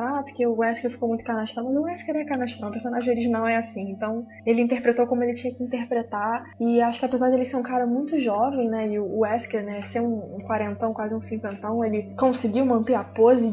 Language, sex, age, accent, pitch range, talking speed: Portuguese, female, 10-29, Brazilian, 220-255 Hz, 230 wpm